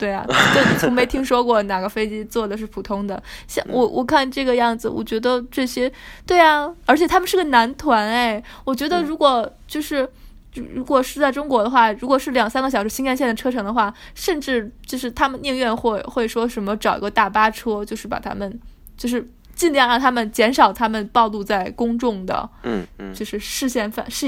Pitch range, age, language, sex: 215-260 Hz, 20-39, Japanese, female